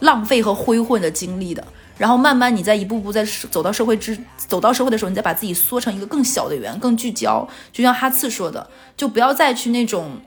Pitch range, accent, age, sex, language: 215-255 Hz, native, 20-39, female, Chinese